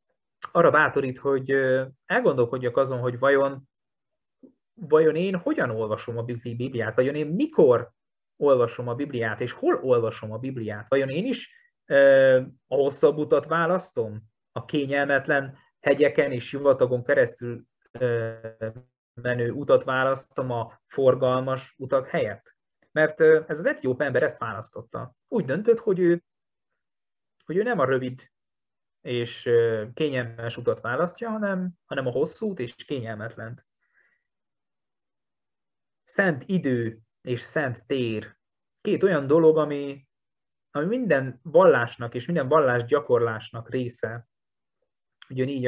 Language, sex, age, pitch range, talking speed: Hungarian, male, 30-49, 120-155 Hz, 115 wpm